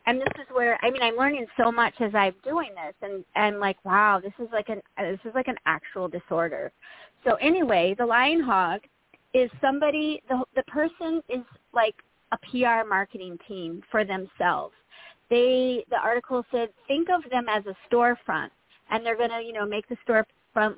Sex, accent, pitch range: female, American, 220-275 Hz